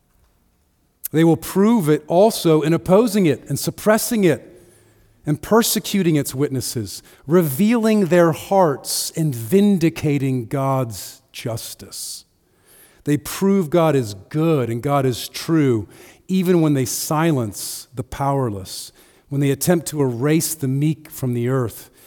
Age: 40-59